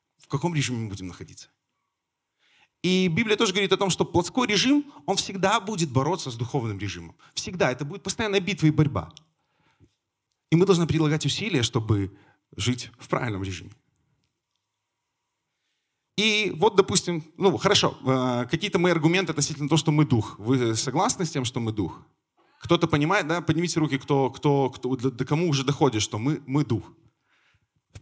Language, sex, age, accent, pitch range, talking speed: Russian, male, 30-49, native, 130-180 Hz, 165 wpm